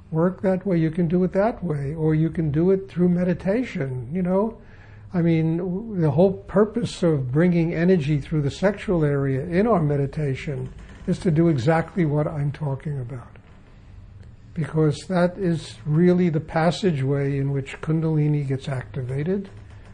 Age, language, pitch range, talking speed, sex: 60-79, English, 135-170 Hz, 155 wpm, male